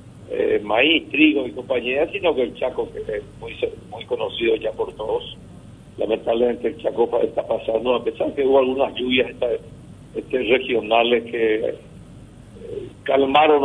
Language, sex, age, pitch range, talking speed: Spanish, male, 50-69, 125-180 Hz, 155 wpm